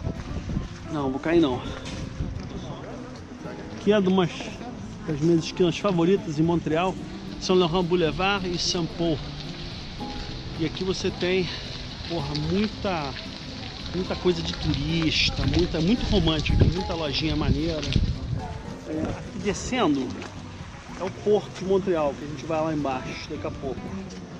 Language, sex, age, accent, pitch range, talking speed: Portuguese, male, 40-59, Brazilian, 135-180 Hz, 115 wpm